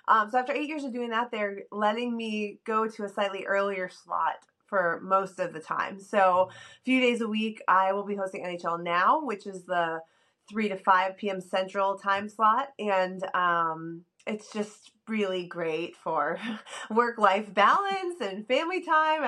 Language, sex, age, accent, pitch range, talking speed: English, female, 20-39, American, 180-230 Hz, 175 wpm